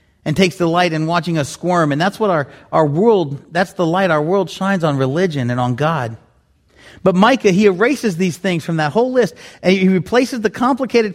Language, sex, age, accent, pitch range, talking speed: English, male, 40-59, American, 130-200 Hz, 215 wpm